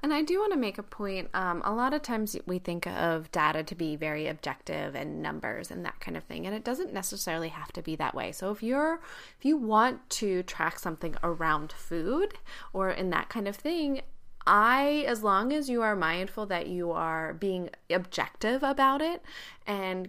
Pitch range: 180-255 Hz